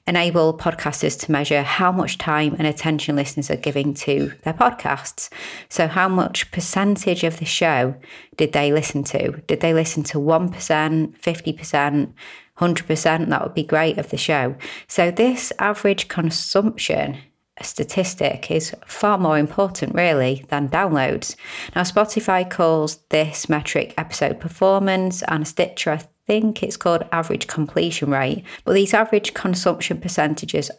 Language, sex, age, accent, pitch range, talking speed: English, female, 30-49, British, 145-180 Hz, 140 wpm